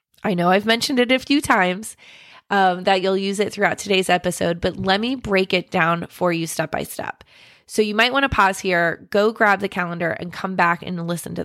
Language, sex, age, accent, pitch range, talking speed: English, female, 20-39, American, 175-210 Hz, 230 wpm